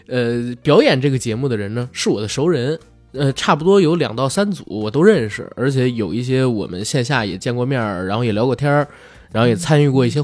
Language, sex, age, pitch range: Chinese, male, 20-39, 115-165 Hz